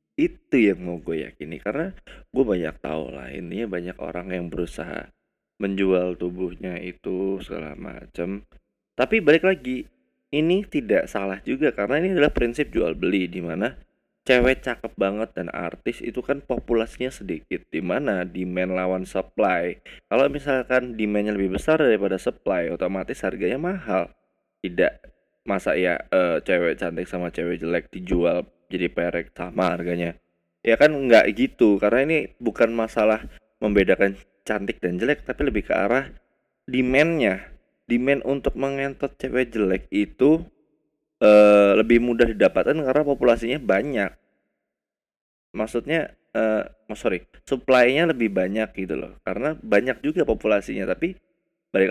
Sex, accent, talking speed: male, native, 135 wpm